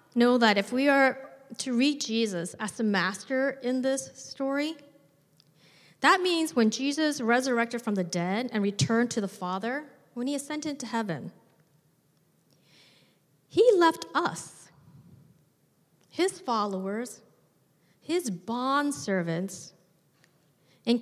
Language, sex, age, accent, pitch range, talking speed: English, female, 30-49, American, 165-245 Hz, 115 wpm